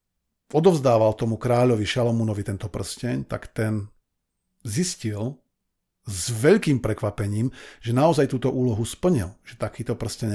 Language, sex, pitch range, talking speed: Slovak, male, 110-135 Hz, 115 wpm